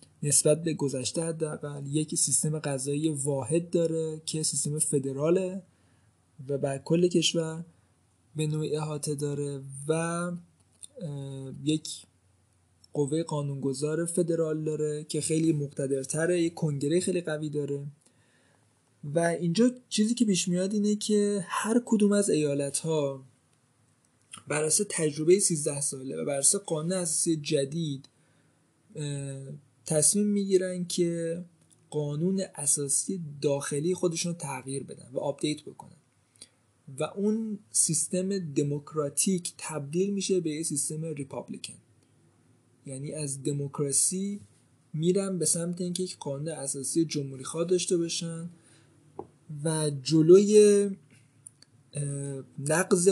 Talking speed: 105 wpm